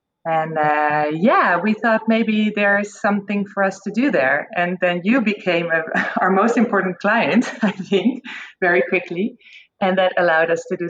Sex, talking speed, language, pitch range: female, 180 wpm, English, 160-200 Hz